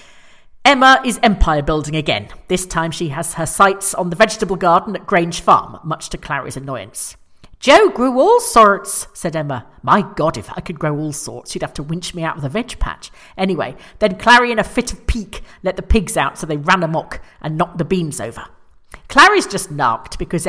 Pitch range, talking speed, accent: 155-215 Hz, 210 wpm, British